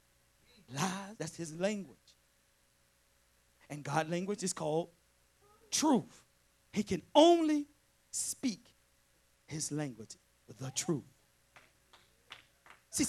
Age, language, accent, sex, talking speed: 40-59, English, American, male, 85 wpm